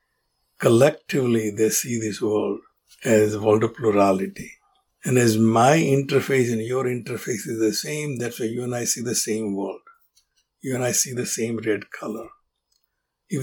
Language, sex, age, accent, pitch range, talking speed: English, male, 60-79, Indian, 115-140 Hz, 170 wpm